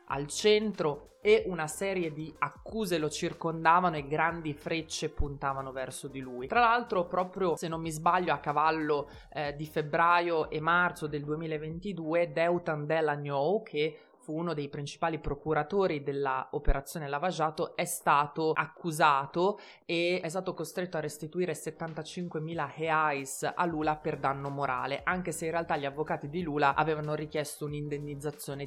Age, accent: 20-39, native